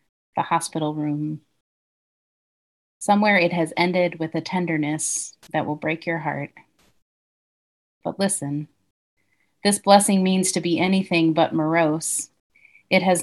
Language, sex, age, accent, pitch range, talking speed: English, female, 30-49, American, 155-180 Hz, 120 wpm